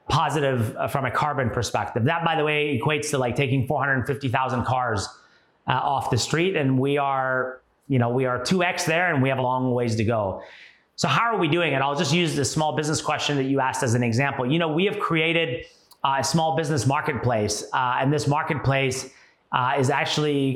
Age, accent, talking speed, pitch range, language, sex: 30-49, American, 205 wpm, 130-155 Hz, English, male